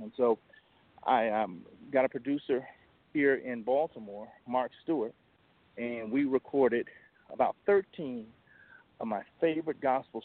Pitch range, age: 115-140 Hz, 40-59